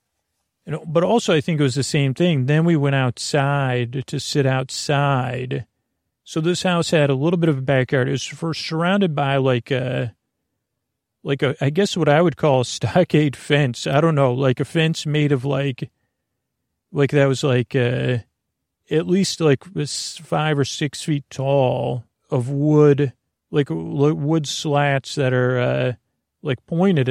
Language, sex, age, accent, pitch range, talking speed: English, male, 40-59, American, 130-155 Hz, 165 wpm